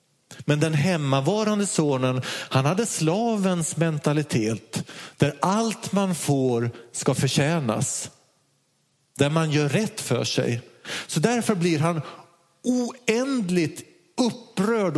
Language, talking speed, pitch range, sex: Swedish, 105 wpm, 125-170 Hz, male